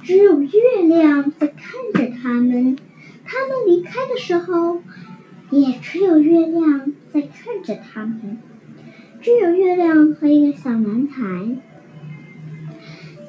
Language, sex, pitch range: Chinese, male, 255-365 Hz